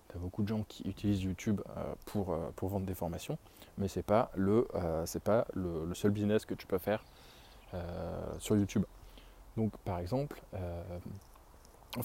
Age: 20-39